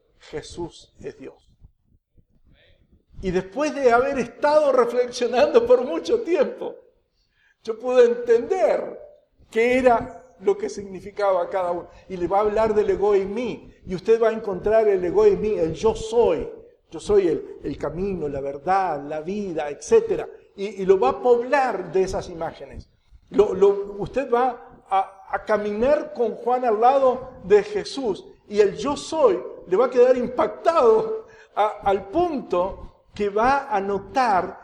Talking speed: 155 wpm